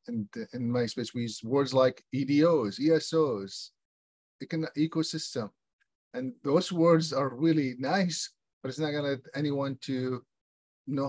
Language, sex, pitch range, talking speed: English, male, 115-140 Hz, 135 wpm